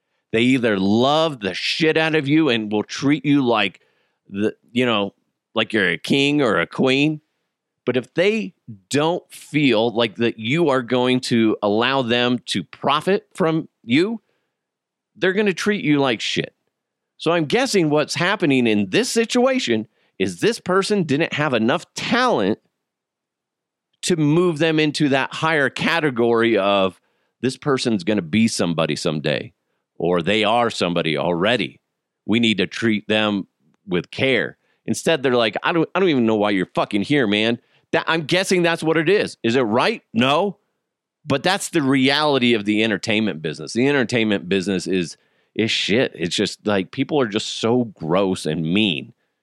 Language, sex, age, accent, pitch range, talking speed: English, male, 40-59, American, 110-160 Hz, 170 wpm